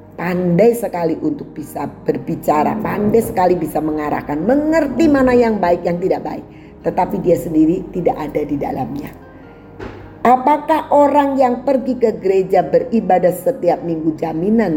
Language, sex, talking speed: Indonesian, female, 135 wpm